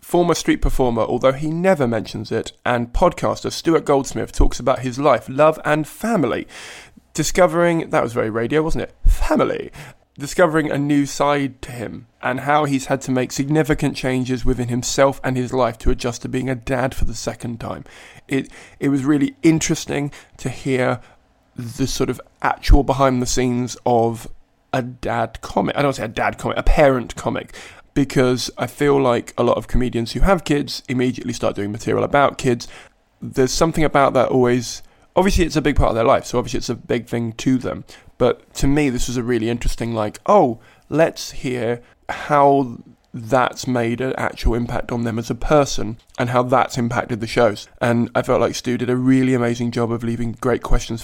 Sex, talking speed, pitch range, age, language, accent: male, 195 wpm, 120-140 Hz, 20-39, English, British